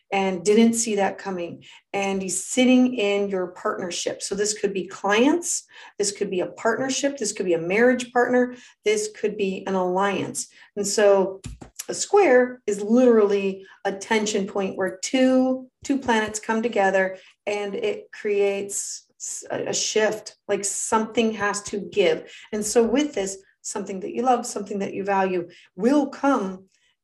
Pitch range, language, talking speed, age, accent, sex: 190-240 Hz, English, 160 wpm, 40-59, American, female